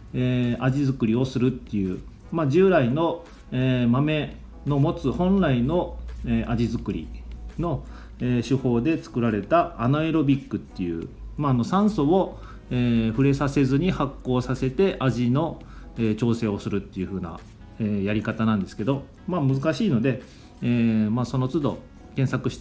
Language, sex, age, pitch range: Japanese, male, 40-59, 110-145 Hz